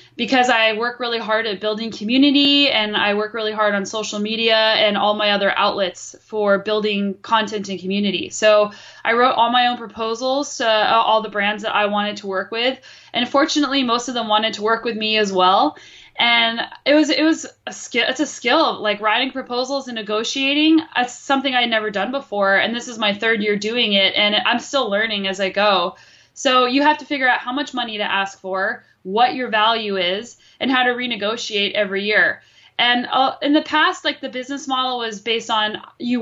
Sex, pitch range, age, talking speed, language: female, 210-250 Hz, 10-29, 210 wpm, English